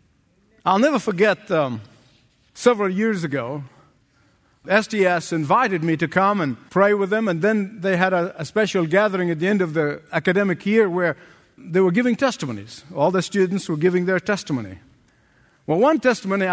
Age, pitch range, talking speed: 50-69, 170-235 Hz, 165 wpm